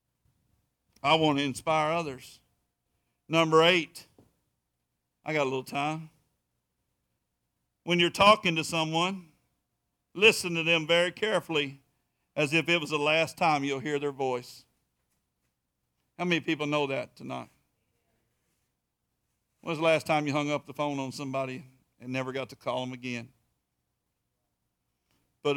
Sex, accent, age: male, American, 50-69